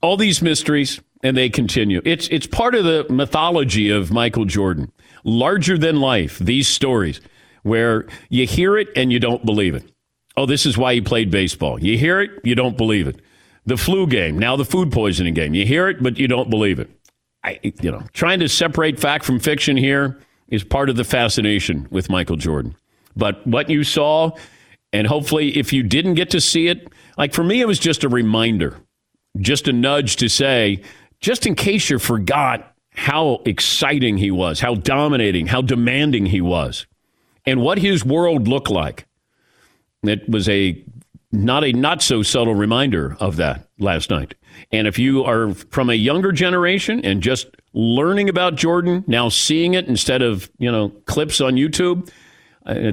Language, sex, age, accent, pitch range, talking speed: English, male, 50-69, American, 105-150 Hz, 180 wpm